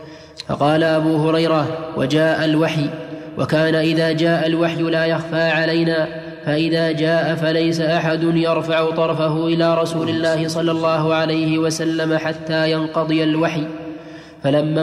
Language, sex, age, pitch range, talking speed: Arabic, male, 20-39, 160-165 Hz, 115 wpm